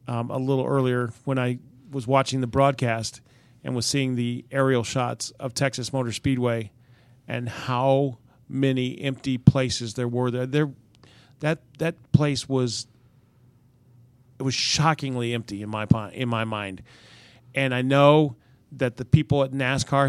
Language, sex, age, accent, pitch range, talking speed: English, male, 40-59, American, 120-140 Hz, 150 wpm